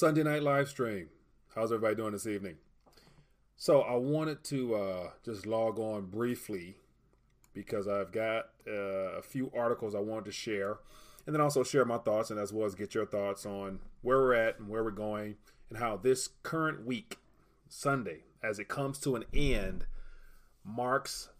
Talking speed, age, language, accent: 175 wpm, 30-49, English, American